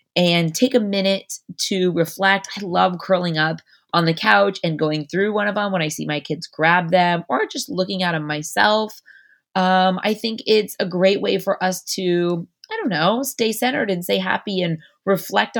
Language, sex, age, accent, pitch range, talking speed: English, female, 20-39, American, 160-205 Hz, 200 wpm